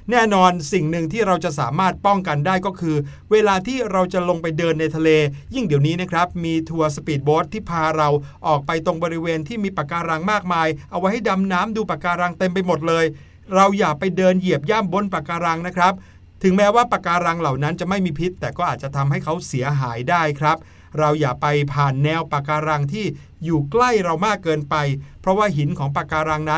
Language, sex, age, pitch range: Thai, male, 60-79, 150-185 Hz